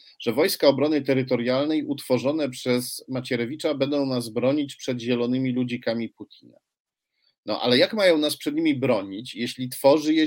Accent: native